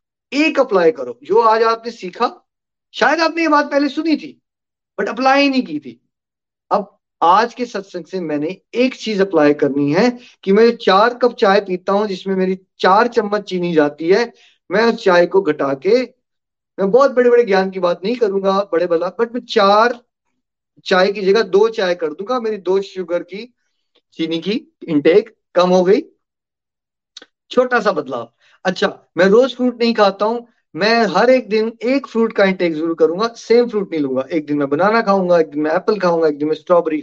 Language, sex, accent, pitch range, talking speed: Hindi, male, native, 180-240 Hz, 180 wpm